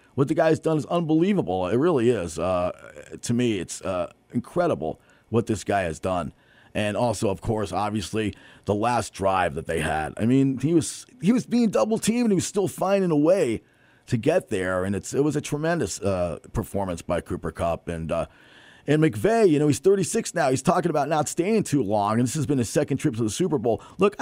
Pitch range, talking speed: 100-155 Hz, 220 wpm